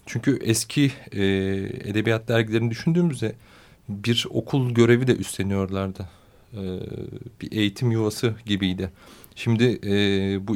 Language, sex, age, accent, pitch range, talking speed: Turkish, male, 40-59, native, 100-115 Hz, 90 wpm